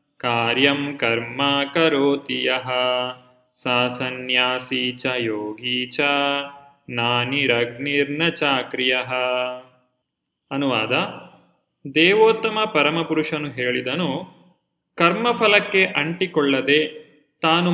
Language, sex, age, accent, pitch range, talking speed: Kannada, male, 30-49, native, 140-175 Hz, 50 wpm